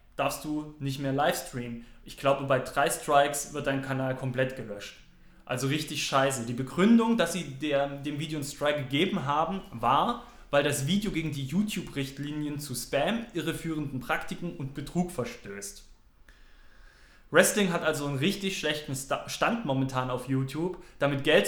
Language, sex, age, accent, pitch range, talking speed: German, male, 20-39, German, 130-160 Hz, 150 wpm